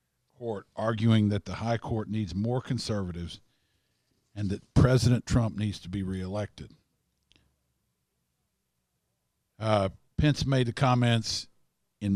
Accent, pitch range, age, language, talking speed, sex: American, 95-115 Hz, 50-69, English, 110 wpm, male